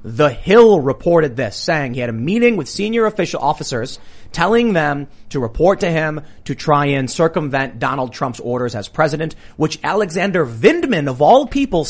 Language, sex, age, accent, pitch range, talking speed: English, male, 30-49, American, 120-175 Hz, 170 wpm